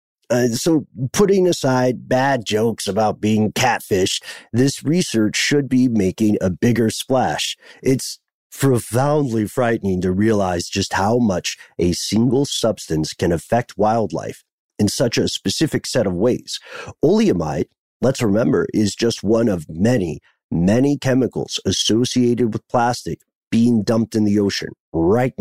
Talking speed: 135 wpm